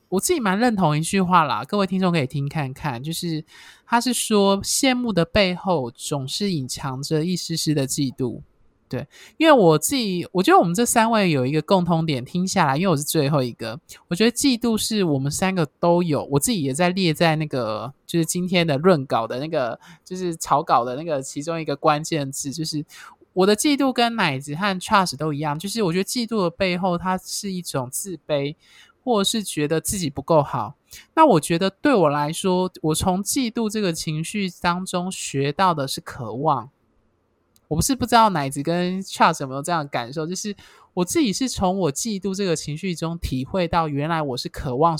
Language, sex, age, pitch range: Chinese, male, 20-39, 145-195 Hz